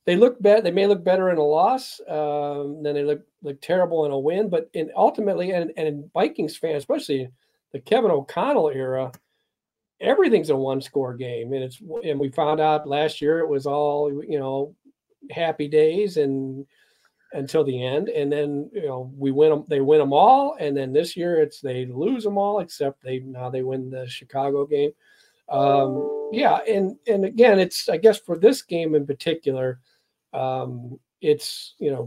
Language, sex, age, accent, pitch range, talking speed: English, male, 40-59, American, 135-160 Hz, 190 wpm